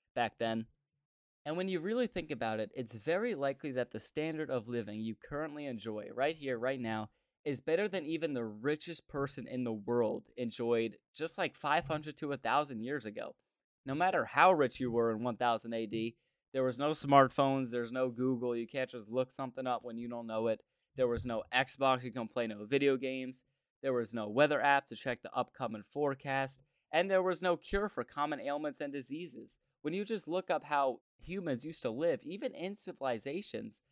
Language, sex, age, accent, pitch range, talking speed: English, male, 20-39, American, 120-150 Hz, 200 wpm